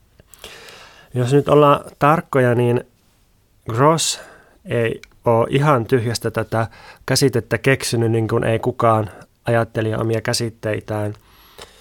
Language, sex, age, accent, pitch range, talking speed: Finnish, male, 30-49, native, 110-125 Hz, 100 wpm